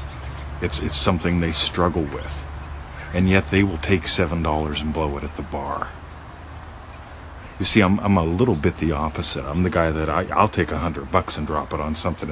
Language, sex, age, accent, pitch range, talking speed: English, male, 40-59, American, 80-105 Hz, 205 wpm